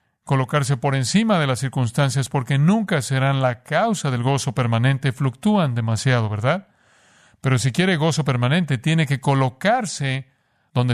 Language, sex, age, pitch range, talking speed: Spanish, male, 50-69, 125-145 Hz, 145 wpm